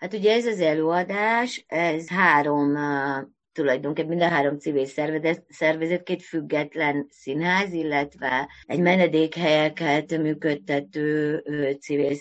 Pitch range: 135-160 Hz